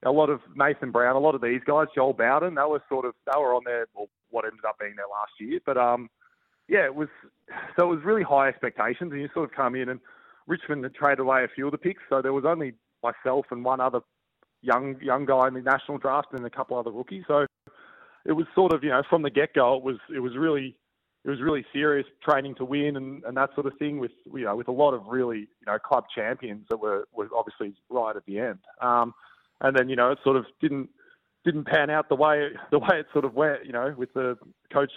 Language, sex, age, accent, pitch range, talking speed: English, male, 20-39, Australian, 120-145 Hz, 255 wpm